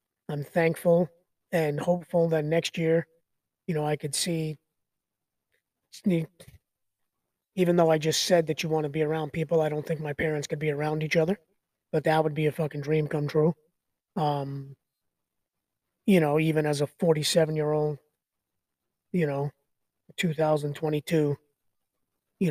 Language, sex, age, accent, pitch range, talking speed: English, male, 20-39, American, 150-170 Hz, 145 wpm